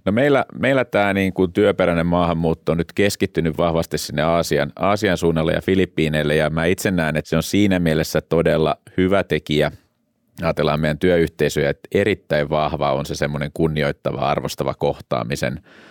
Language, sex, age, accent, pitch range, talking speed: Finnish, male, 30-49, native, 75-90 Hz, 150 wpm